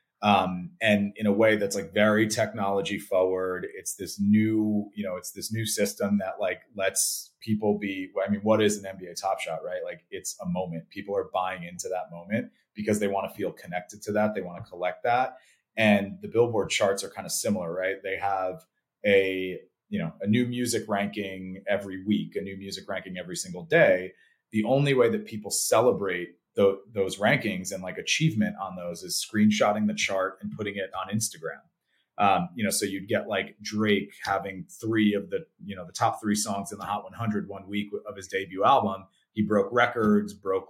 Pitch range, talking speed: 100-110 Hz, 200 wpm